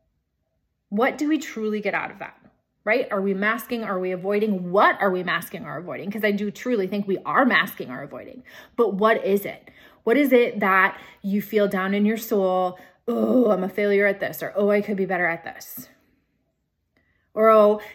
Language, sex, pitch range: English, female, 205-270 Hz